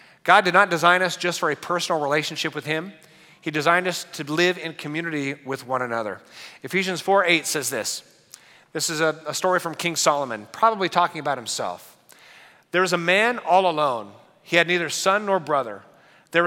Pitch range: 150-185 Hz